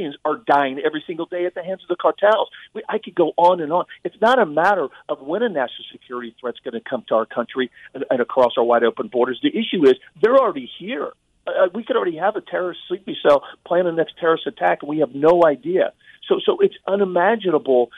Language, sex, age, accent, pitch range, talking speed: English, male, 50-69, American, 150-205 Hz, 235 wpm